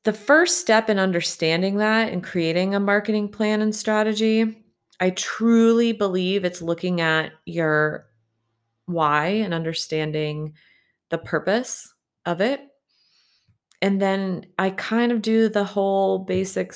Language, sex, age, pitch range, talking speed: English, female, 20-39, 155-195 Hz, 130 wpm